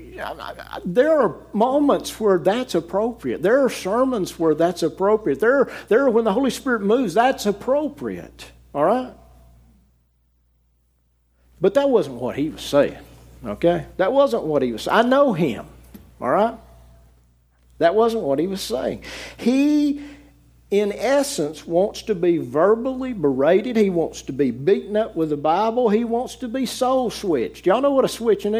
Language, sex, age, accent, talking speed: English, male, 50-69, American, 160 wpm